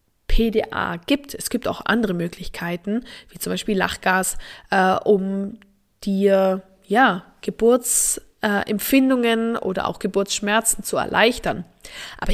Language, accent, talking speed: German, German, 100 wpm